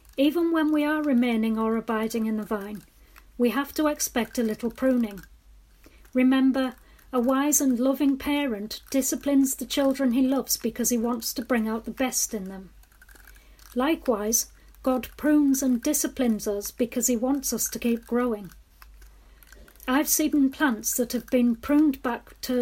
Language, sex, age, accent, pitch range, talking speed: English, female, 40-59, British, 230-270 Hz, 160 wpm